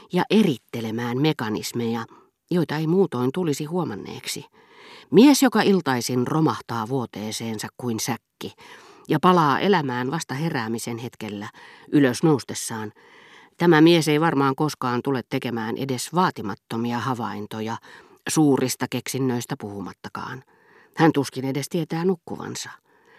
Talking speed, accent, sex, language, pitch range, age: 105 wpm, native, female, Finnish, 120-170 Hz, 40-59